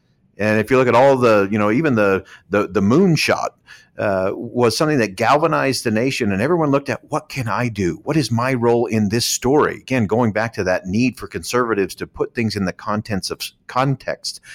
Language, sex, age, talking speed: English, male, 50-69, 215 wpm